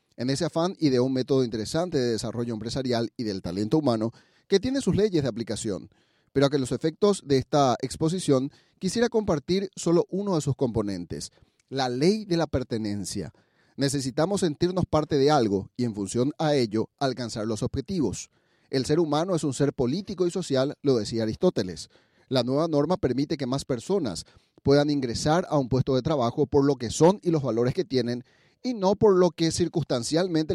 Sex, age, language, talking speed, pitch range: male, 40-59, Spanish, 185 wpm, 120-165 Hz